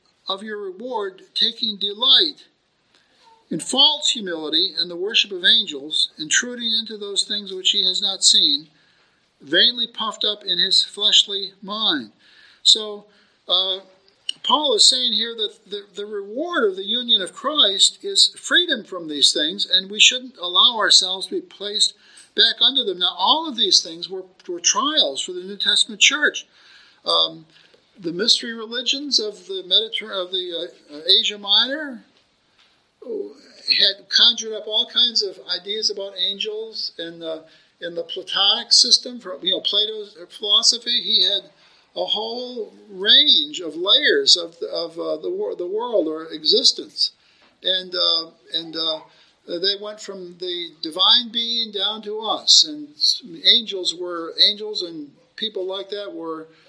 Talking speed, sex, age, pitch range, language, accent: 150 wpm, male, 50-69, 190-290 Hz, English, American